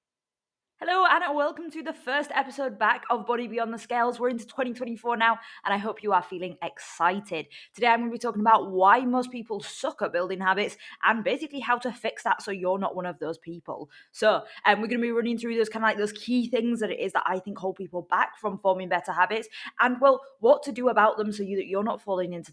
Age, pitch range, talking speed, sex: 20-39, 180-240 Hz, 245 wpm, female